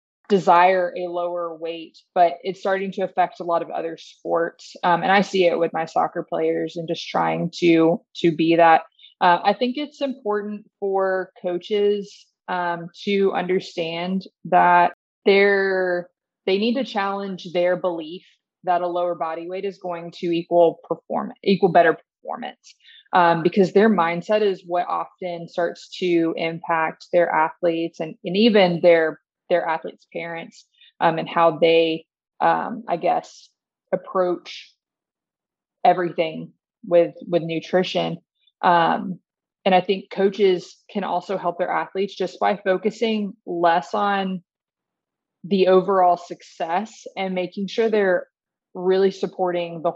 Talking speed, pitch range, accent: 140 wpm, 170-195 Hz, American